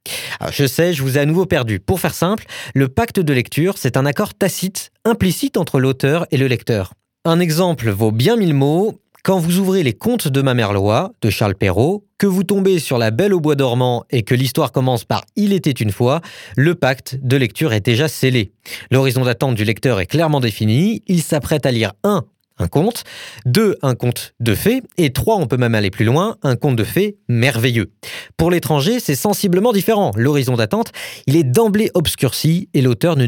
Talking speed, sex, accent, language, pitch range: 205 wpm, male, French, French, 120-175 Hz